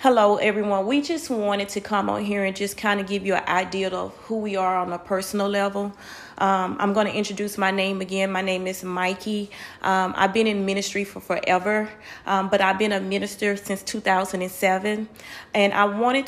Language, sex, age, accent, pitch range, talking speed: English, female, 30-49, American, 190-215 Hz, 205 wpm